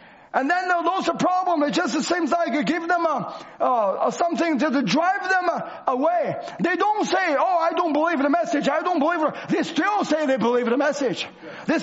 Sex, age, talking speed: male, 40-59, 215 wpm